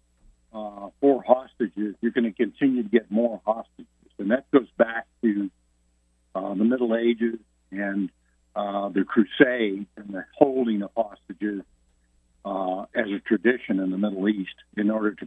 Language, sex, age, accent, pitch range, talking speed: English, male, 50-69, American, 90-120 Hz, 155 wpm